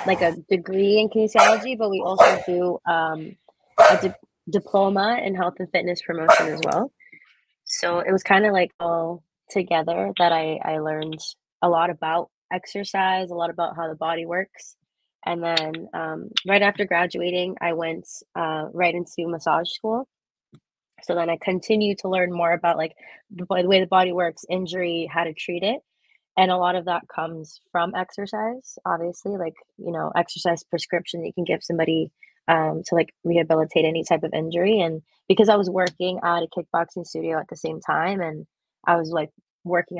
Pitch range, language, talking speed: 165-185 Hz, English, 180 wpm